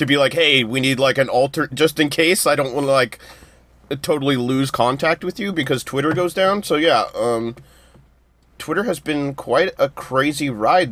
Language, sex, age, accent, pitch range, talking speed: English, male, 30-49, American, 120-145 Hz, 200 wpm